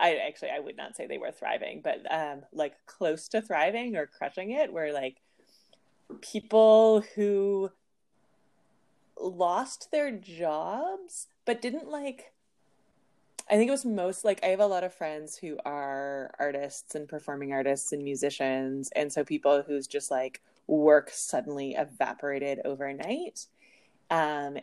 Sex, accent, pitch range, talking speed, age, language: female, American, 135-165 Hz, 145 wpm, 20-39, English